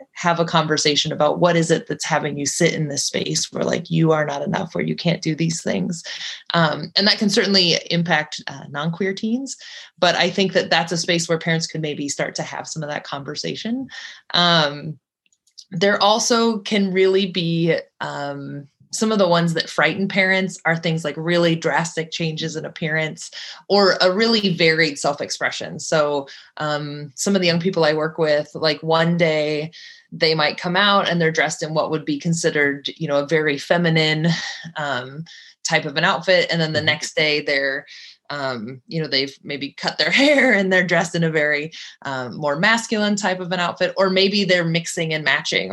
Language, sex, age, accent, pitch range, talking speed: English, female, 20-39, American, 150-185 Hz, 195 wpm